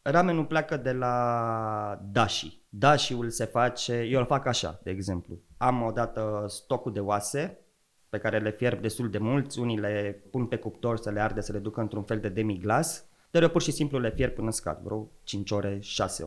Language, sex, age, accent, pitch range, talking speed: Romanian, male, 20-39, native, 100-125 Hz, 205 wpm